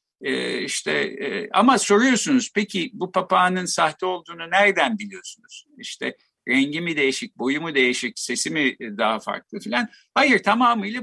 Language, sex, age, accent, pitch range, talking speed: Turkish, male, 50-69, native, 135-220 Hz, 130 wpm